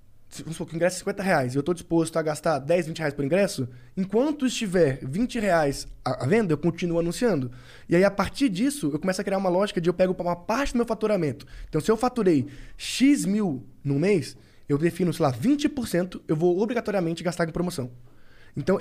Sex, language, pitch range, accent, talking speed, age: male, Portuguese, 145-205 Hz, Brazilian, 205 wpm, 20-39